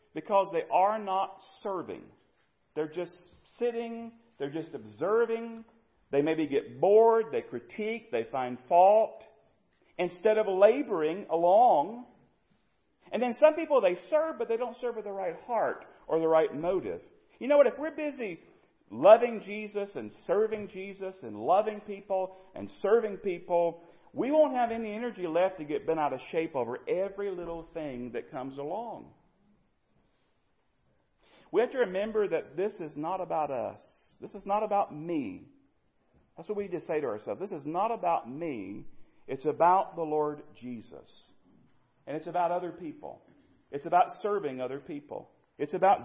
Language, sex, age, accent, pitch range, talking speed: English, male, 40-59, American, 165-225 Hz, 160 wpm